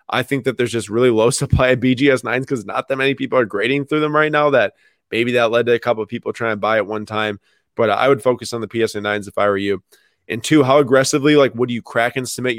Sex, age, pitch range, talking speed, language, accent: male, 20-39, 110-130 Hz, 280 wpm, English, American